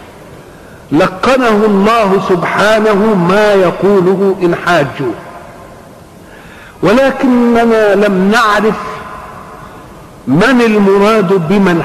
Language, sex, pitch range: Arabic, male, 175-220 Hz